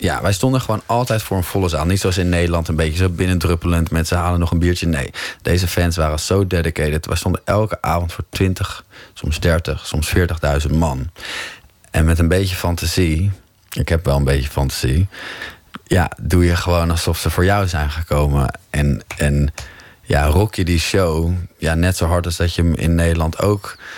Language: Dutch